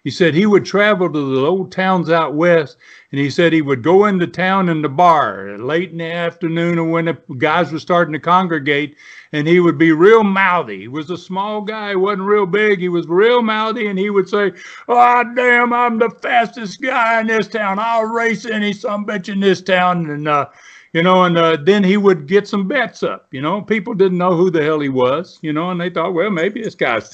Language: English